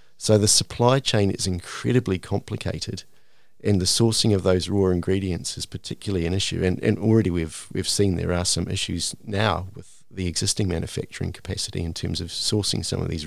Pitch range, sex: 90-110 Hz, male